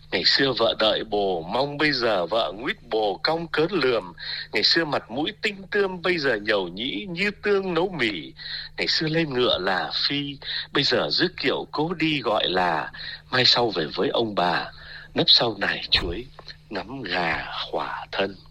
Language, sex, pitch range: Vietnamese, male, 130-175 Hz